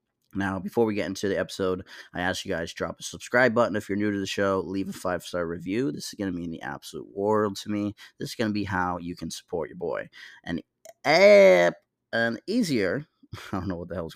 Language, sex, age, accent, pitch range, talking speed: English, male, 20-39, American, 85-105 Hz, 235 wpm